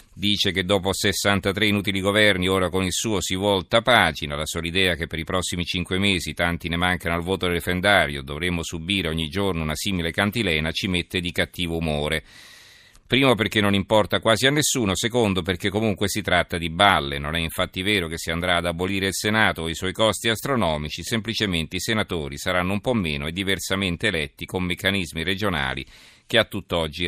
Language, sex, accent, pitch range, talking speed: Italian, male, native, 85-105 Hz, 195 wpm